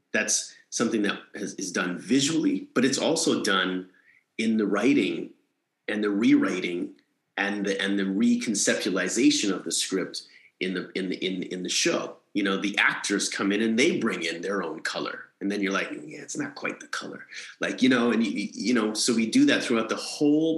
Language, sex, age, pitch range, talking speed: English, male, 30-49, 95-130 Hz, 200 wpm